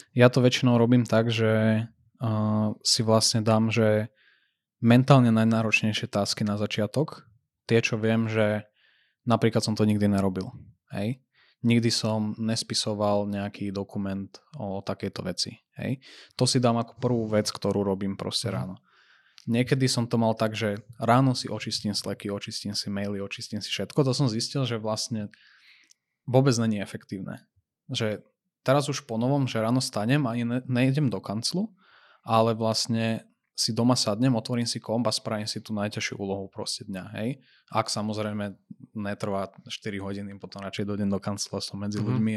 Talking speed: 155 wpm